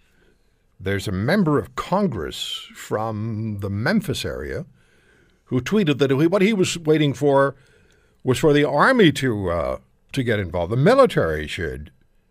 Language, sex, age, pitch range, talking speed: English, male, 60-79, 90-150 Hz, 140 wpm